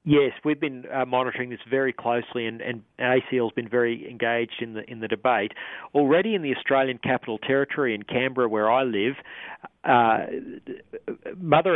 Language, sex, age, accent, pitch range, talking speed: English, male, 40-59, Australian, 115-135 Hz, 160 wpm